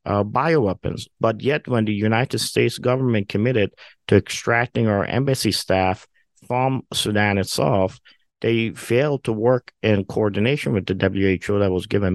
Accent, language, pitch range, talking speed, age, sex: American, English, 95-110 Hz, 150 wpm, 50-69, male